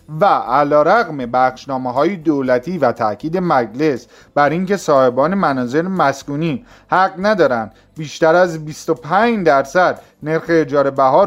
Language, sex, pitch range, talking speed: Persian, male, 130-180 Hz, 120 wpm